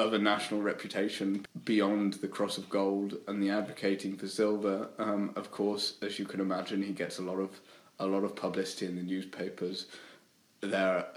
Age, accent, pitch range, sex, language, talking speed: 20-39, British, 95-105 Hz, male, English, 185 wpm